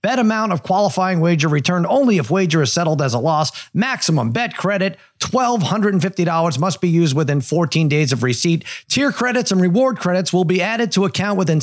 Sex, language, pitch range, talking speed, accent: male, English, 170-215 Hz, 190 wpm, American